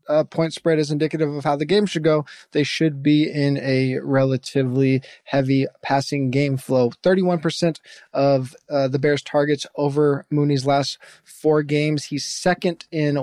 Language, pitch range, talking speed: English, 140-160 Hz, 160 wpm